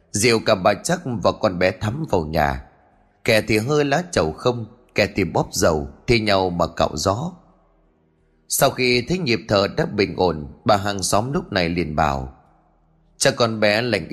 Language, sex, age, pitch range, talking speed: Vietnamese, male, 20-39, 90-125 Hz, 185 wpm